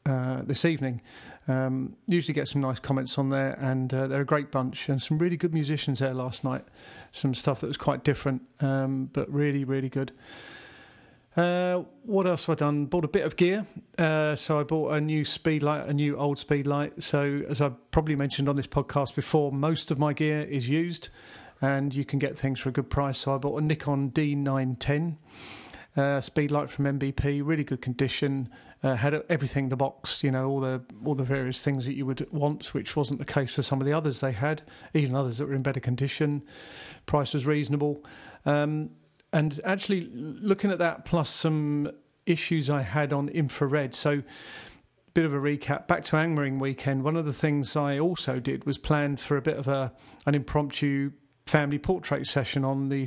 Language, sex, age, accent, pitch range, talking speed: English, male, 40-59, British, 135-155 Hz, 205 wpm